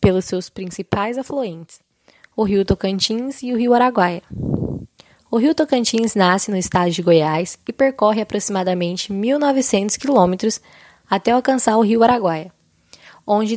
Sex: female